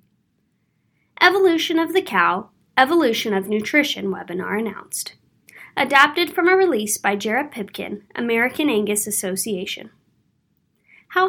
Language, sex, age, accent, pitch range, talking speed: English, female, 20-39, American, 215-320 Hz, 105 wpm